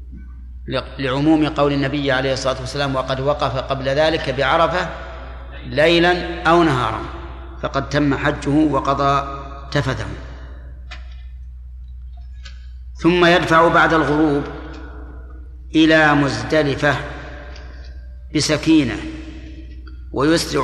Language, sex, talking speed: Arabic, male, 80 wpm